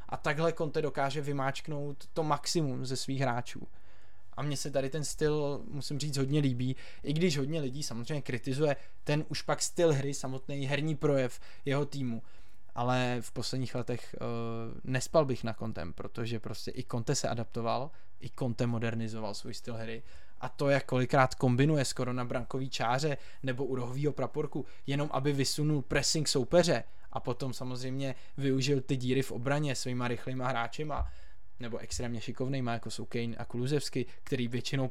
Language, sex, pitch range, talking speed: Czech, male, 115-140 Hz, 165 wpm